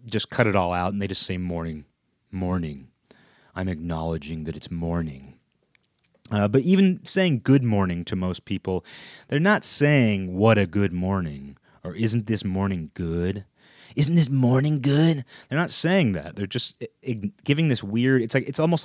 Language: English